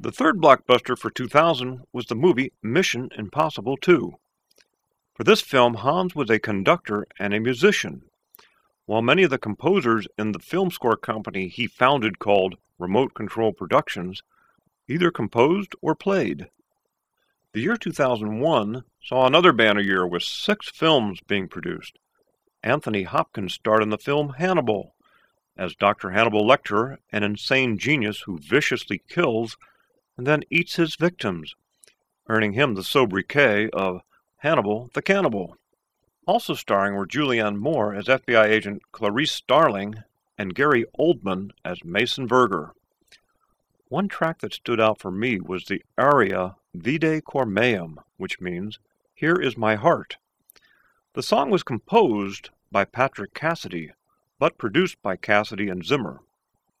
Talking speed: 135 wpm